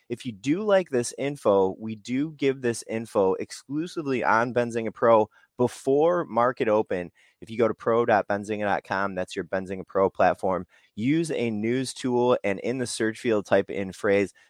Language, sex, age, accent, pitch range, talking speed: English, male, 20-39, American, 105-130 Hz, 165 wpm